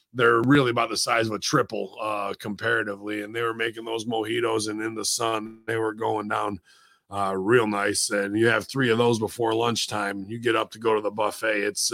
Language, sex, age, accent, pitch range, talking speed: English, male, 30-49, American, 100-120 Hz, 220 wpm